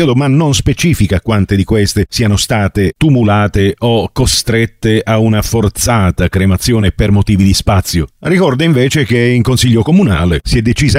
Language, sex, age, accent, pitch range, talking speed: Italian, male, 50-69, native, 100-135 Hz, 155 wpm